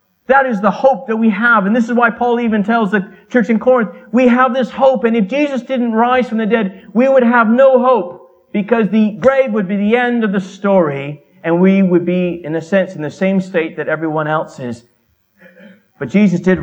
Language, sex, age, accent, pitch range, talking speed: English, male, 40-59, American, 175-230 Hz, 225 wpm